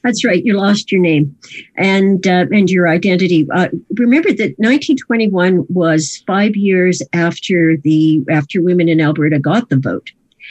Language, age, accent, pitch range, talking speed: English, 50-69, American, 155-195 Hz, 155 wpm